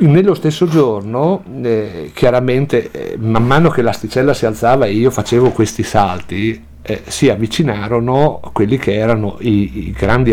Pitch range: 105-125 Hz